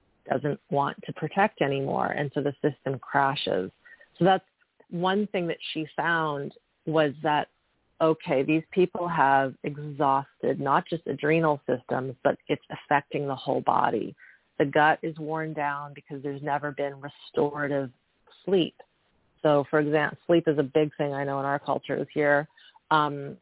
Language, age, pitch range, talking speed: English, 40-59, 145-165 Hz, 155 wpm